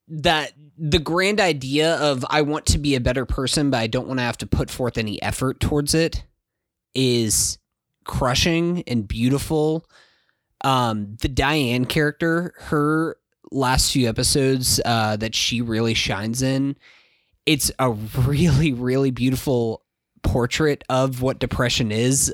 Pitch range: 115-145 Hz